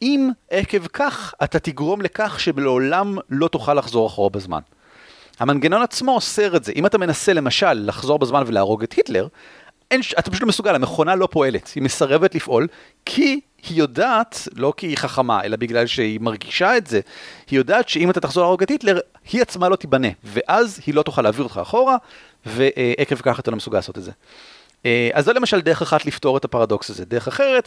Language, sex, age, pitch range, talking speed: Hebrew, male, 40-59, 125-210 Hz, 190 wpm